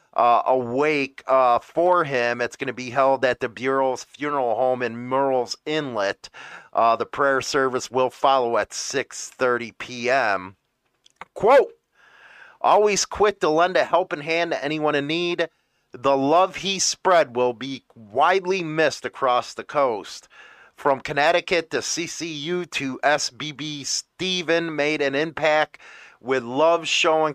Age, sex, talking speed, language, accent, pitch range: 30-49, male, 140 wpm, English, American, 130-155 Hz